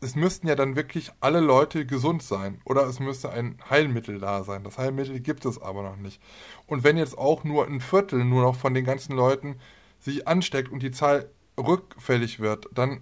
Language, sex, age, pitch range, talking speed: German, male, 20-39, 125-145 Hz, 205 wpm